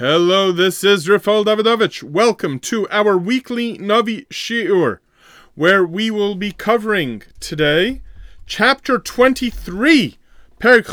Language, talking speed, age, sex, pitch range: English, 110 wpm, 30-49, male, 160-210 Hz